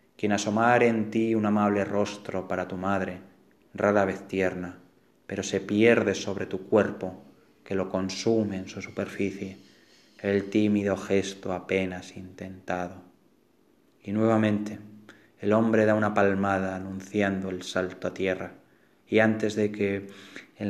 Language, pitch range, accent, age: Spanish, 95-105 Hz, Spanish, 20-39